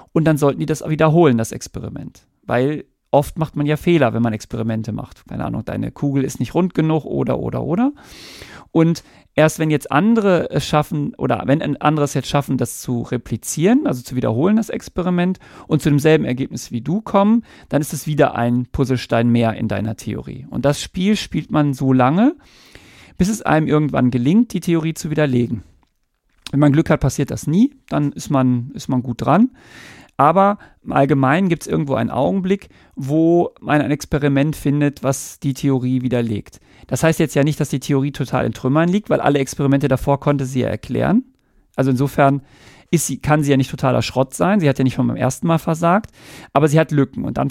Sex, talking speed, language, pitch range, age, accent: male, 200 wpm, German, 130-160 Hz, 40-59, German